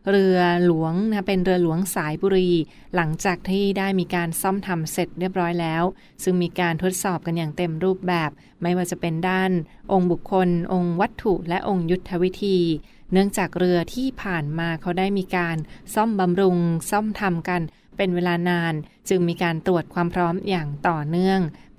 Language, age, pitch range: Thai, 20-39, 170-190 Hz